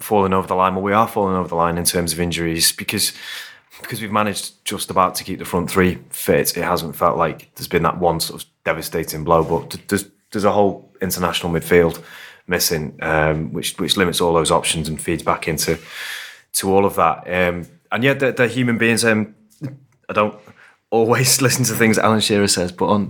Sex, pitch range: male, 85-105 Hz